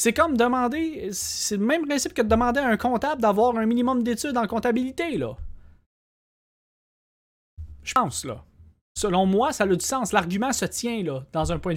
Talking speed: 185 wpm